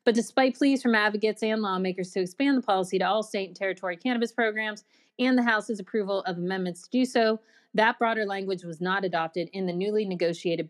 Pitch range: 190-245 Hz